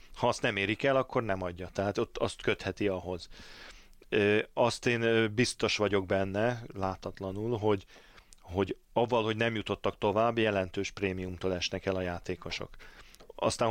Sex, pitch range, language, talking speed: male, 95-115 Hz, Hungarian, 145 wpm